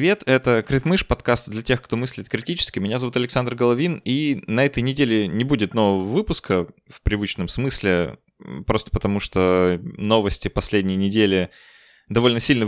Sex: male